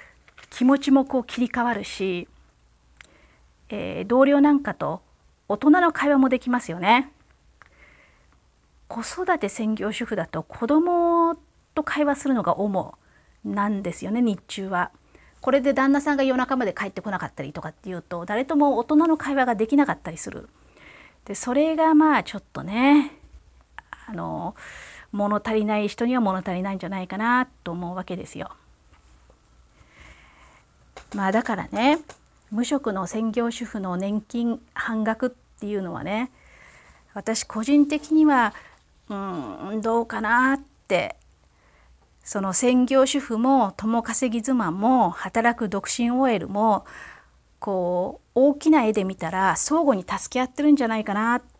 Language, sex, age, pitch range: Japanese, female, 40-59, 190-270 Hz